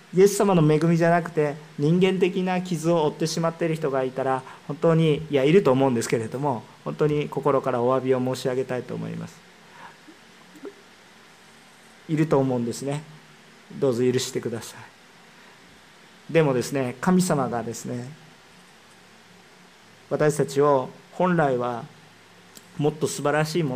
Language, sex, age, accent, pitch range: Japanese, male, 40-59, native, 140-210 Hz